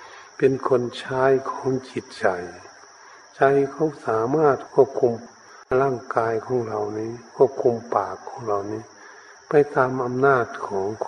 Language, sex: Thai, male